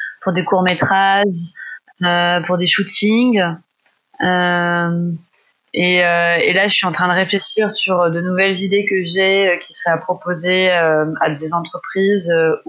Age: 20-39